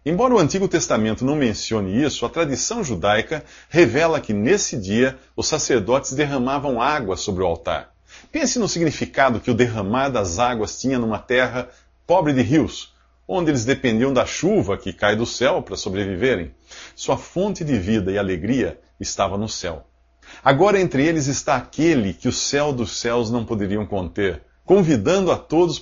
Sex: male